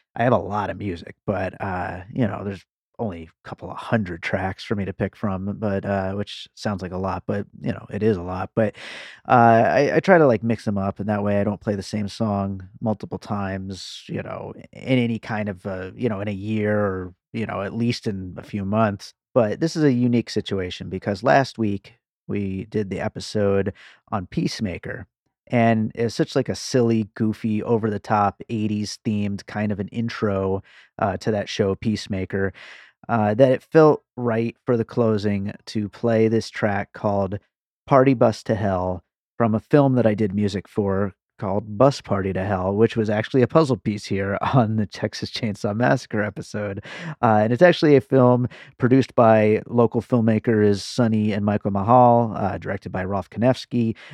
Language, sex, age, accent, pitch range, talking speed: English, male, 30-49, American, 100-115 Hz, 195 wpm